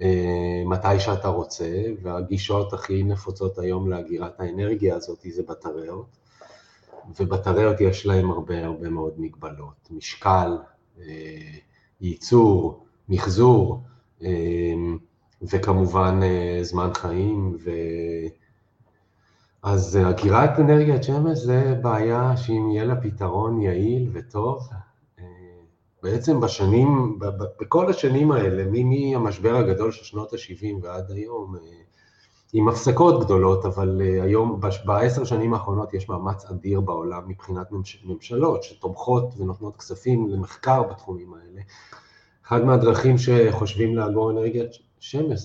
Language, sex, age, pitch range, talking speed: Hebrew, male, 30-49, 90-115 Hz, 105 wpm